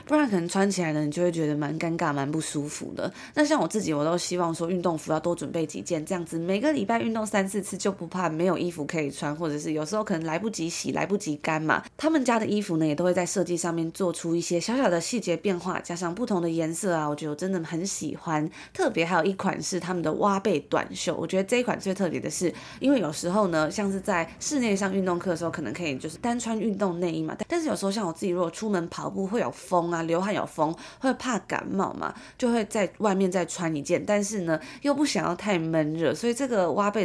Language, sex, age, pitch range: Chinese, female, 20-39, 165-210 Hz